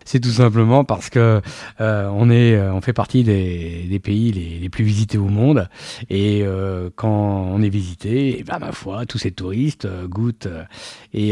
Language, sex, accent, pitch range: French, male, French, 90-115 Hz